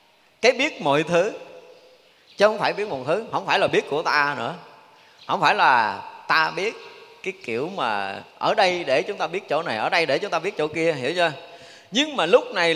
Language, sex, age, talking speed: Vietnamese, male, 30-49, 220 wpm